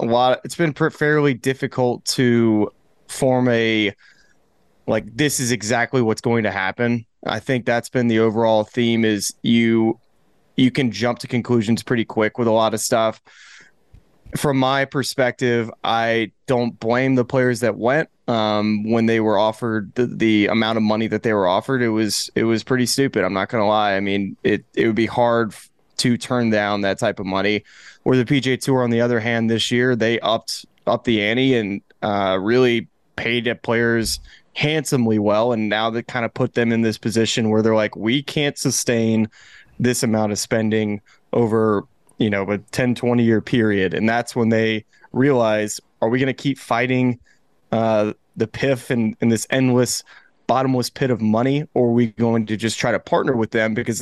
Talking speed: 195 wpm